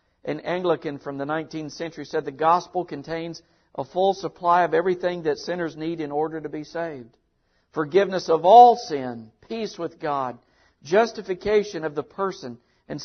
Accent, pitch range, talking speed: American, 130-180 Hz, 160 wpm